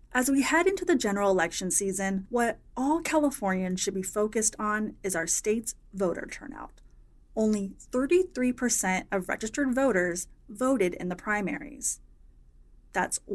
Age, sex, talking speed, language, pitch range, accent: 30-49, female, 135 wpm, English, 190-260 Hz, American